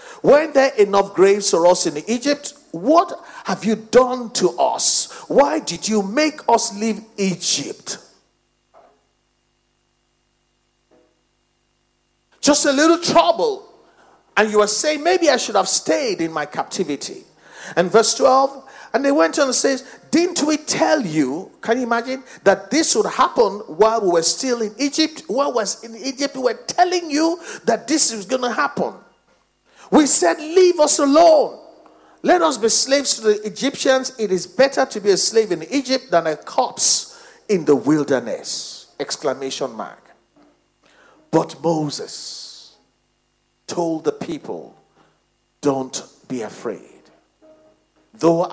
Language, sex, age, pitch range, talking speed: English, male, 50-69, 170-285 Hz, 145 wpm